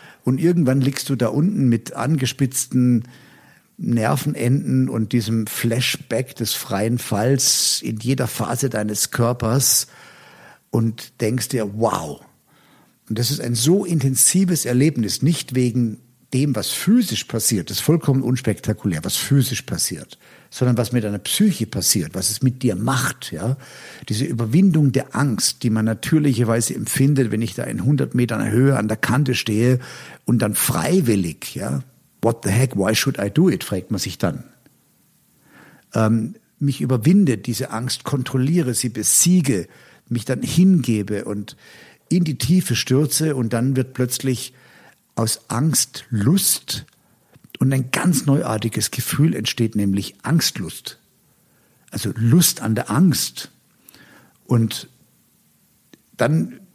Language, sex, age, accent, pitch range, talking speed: German, male, 50-69, German, 115-140 Hz, 135 wpm